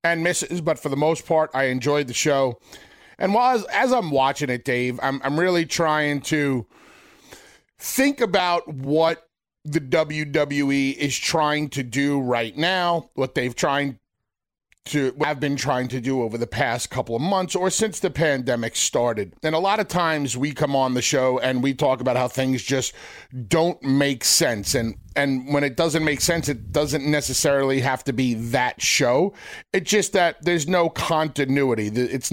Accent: American